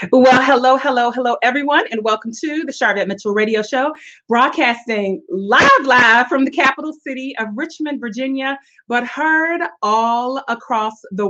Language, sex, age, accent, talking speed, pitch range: English, female, 30-49, American, 150 wpm, 210-265 Hz